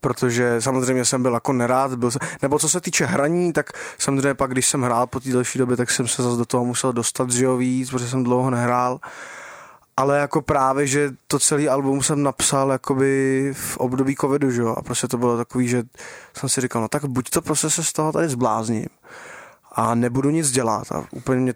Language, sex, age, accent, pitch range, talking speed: Czech, male, 20-39, native, 125-140 Hz, 215 wpm